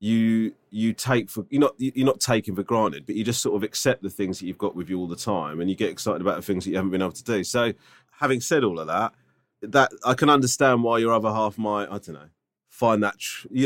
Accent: British